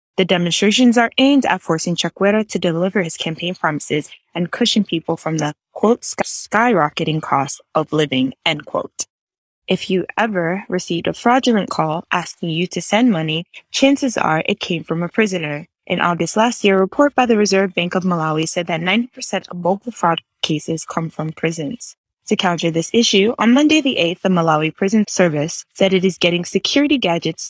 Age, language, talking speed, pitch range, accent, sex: 20-39, English, 185 wpm, 165-215 Hz, American, female